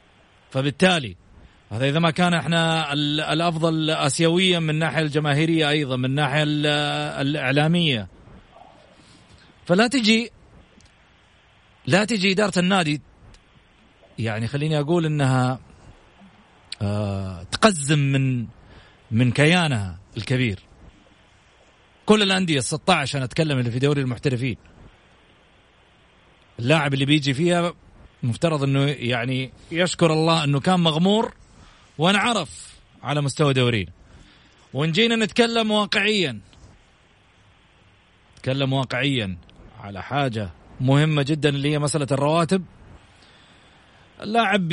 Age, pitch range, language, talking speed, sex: 40-59, 120-165 Hz, Arabic, 95 wpm, male